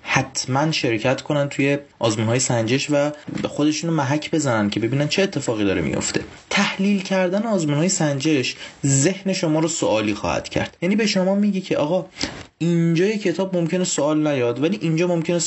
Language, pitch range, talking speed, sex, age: Persian, 135-175 Hz, 165 wpm, male, 30-49